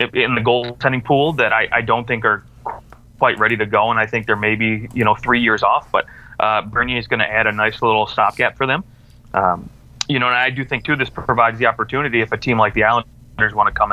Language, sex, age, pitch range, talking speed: English, male, 30-49, 110-125 Hz, 250 wpm